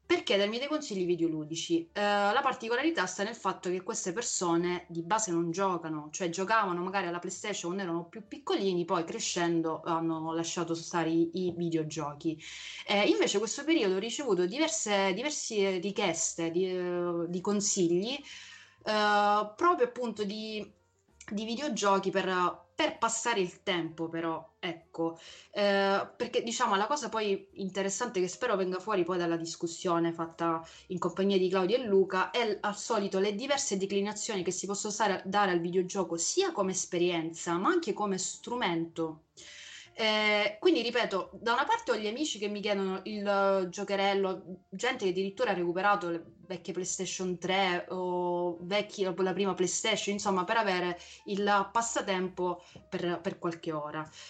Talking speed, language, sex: 155 wpm, Italian, female